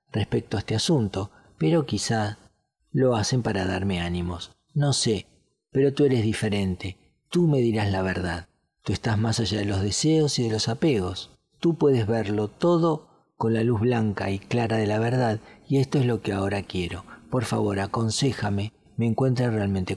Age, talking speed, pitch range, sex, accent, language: 40-59, 175 wpm, 100-130 Hz, male, Argentinian, Spanish